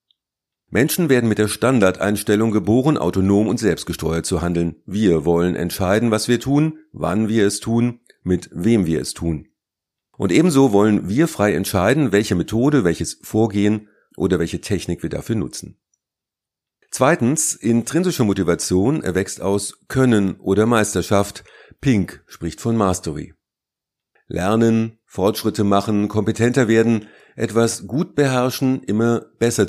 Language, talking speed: German, 130 wpm